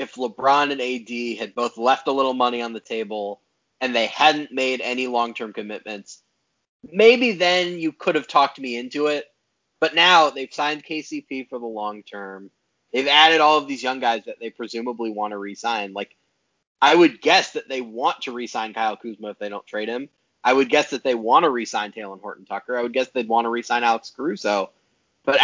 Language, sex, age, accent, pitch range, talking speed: English, male, 30-49, American, 120-155 Hz, 205 wpm